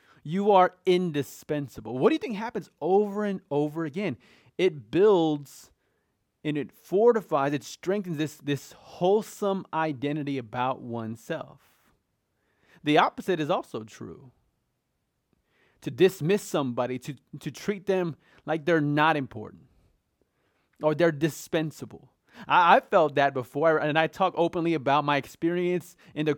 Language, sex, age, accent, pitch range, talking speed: English, male, 30-49, American, 130-175 Hz, 130 wpm